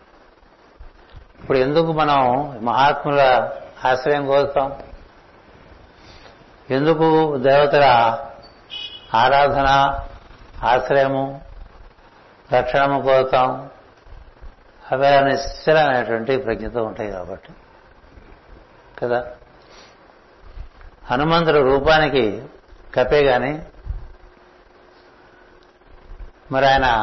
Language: Telugu